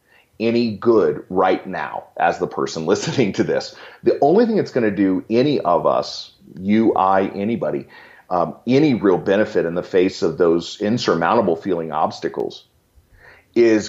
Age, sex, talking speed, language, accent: 40-59, male, 155 wpm, English, American